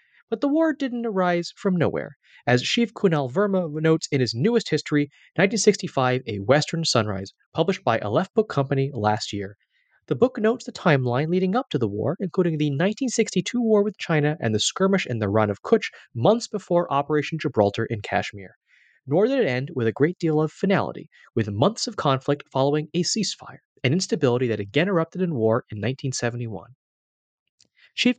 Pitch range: 125-195 Hz